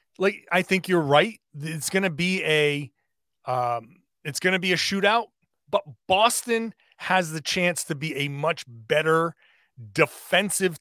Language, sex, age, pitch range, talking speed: English, male, 30-49, 155-195 Hz, 155 wpm